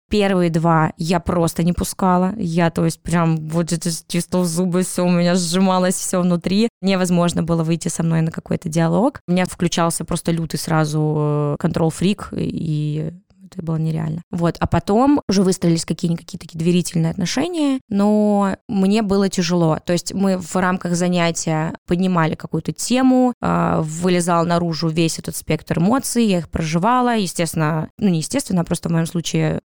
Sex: female